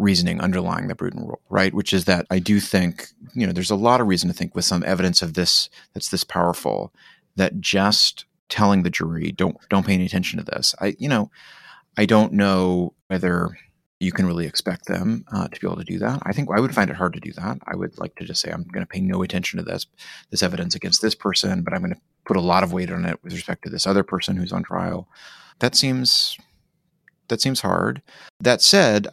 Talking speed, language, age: 240 wpm, English, 30-49